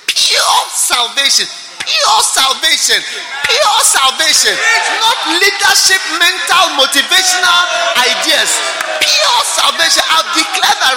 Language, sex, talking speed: English, male, 95 wpm